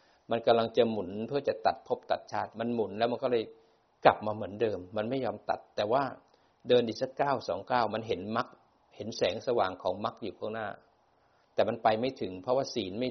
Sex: male